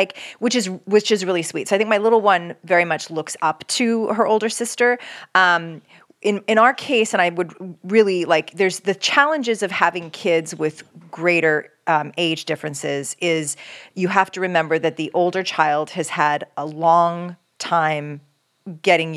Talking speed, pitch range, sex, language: 180 wpm, 150-185 Hz, female, English